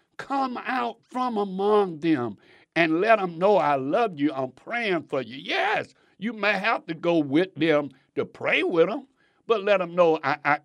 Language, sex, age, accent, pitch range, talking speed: English, male, 60-79, American, 155-210 Hz, 185 wpm